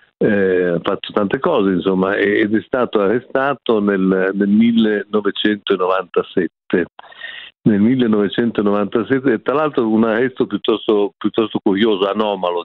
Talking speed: 115 wpm